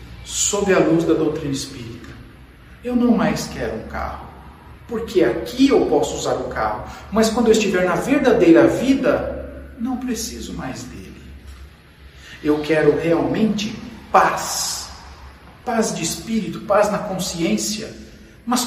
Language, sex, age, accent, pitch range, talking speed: Portuguese, male, 50-69, Brazilian, 110-185 Hz, 130 wpm